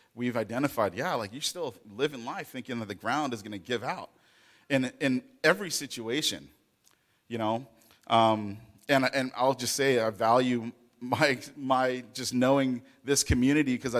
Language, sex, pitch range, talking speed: English, male, 115-140 Hz, 165 wpm